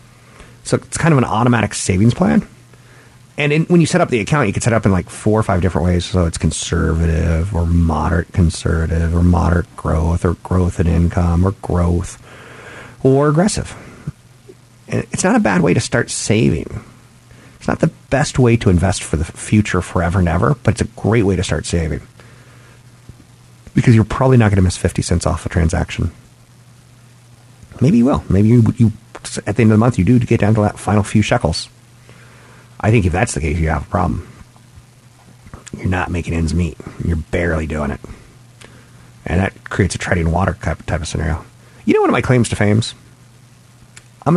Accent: American